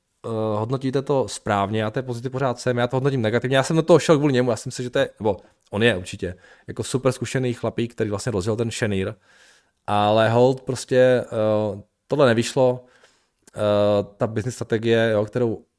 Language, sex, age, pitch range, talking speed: Czech, male, 20-39, 105-130 Hz, 195 wpm